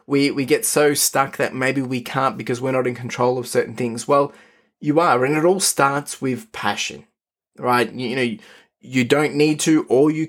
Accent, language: Australian, English